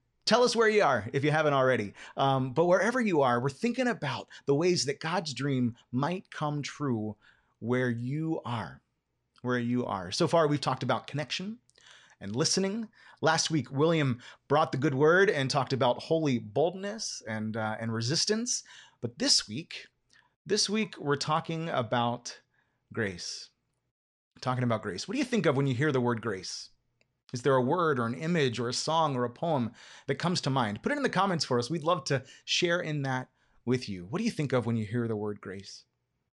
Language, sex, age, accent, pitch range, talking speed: English, male, 30-49, American, 125-160 Hz, 200 wpm